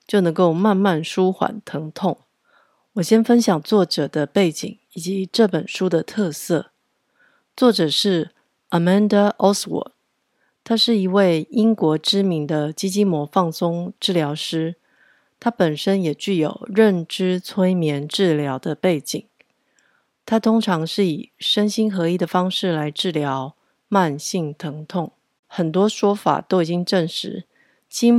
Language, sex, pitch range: Chinese, female, 165-200 Hz